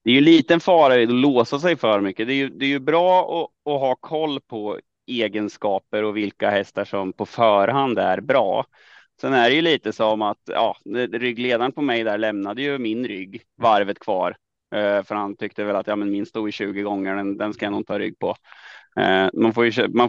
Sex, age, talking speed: male, 30-49, 220 wpm